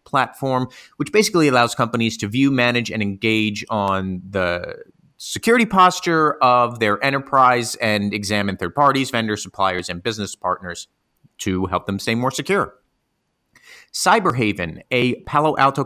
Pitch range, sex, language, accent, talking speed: 100-140 Hz, male, English, American, 135 wpm